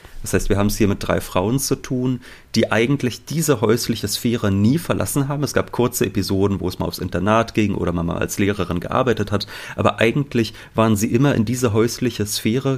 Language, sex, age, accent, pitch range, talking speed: German, male, 30-49, German, 95-115 Hz, 210 wpm